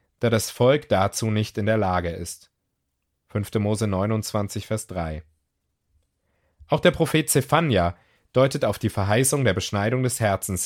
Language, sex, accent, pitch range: German, male, German, 95-130 Hz